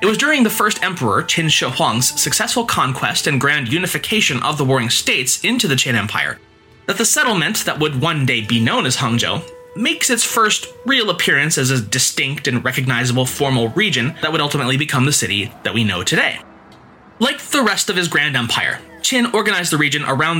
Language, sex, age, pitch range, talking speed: English, male, 20-39, 125-195 Hz, 195 wpm